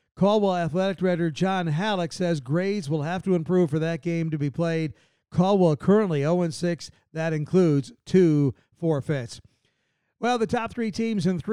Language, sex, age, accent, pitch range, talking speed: English, male, 50-69, American, 160-195 Hz, 165 wpm